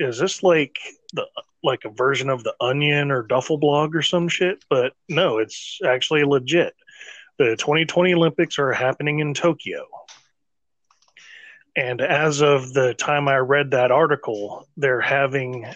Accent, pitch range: American, 130-160 Hz